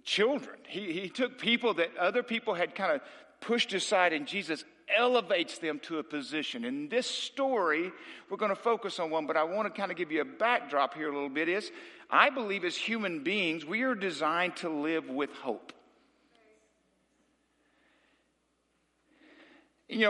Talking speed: 170 wpm